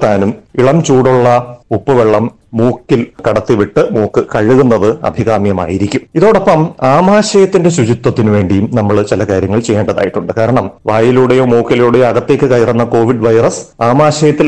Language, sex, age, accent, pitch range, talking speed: Malayalam, male, 30-49, native, 115-145 Hz, 105 wpm